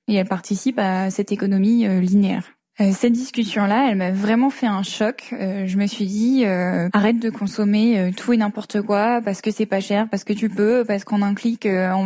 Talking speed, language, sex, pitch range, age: 230 wpm, French, female, 195-225 Hz, 10-29